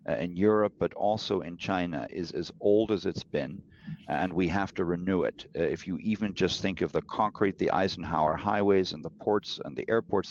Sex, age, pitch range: male, 50-69, 85-105 Hz